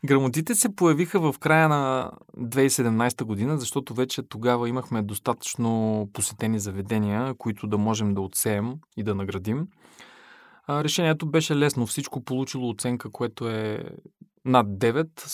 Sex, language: male, Bulgarian